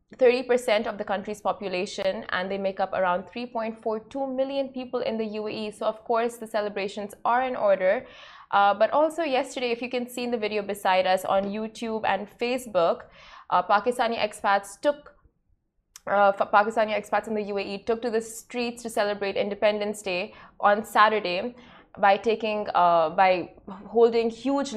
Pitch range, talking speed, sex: 195-230 Hz, 160 wpm, female